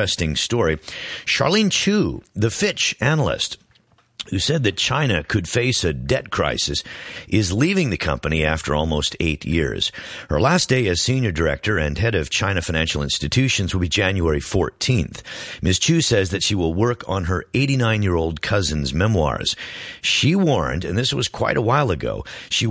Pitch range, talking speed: 80-125 Hz, 170 wpm